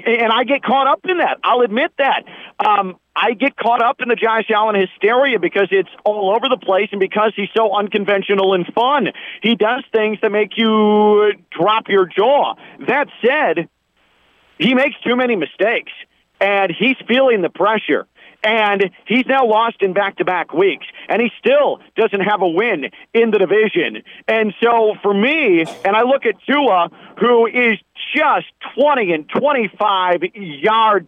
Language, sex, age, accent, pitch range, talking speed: English, male, 40-59, American, 185-230 Hz, 165 wpm